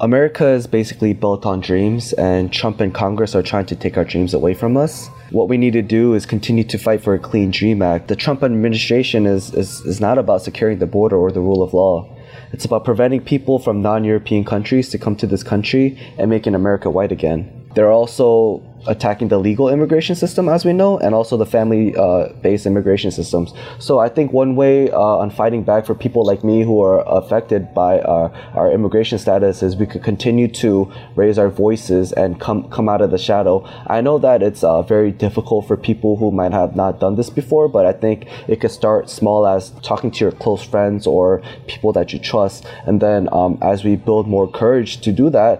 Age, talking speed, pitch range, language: 20-39, 220 wpm, 100-120 Hz, English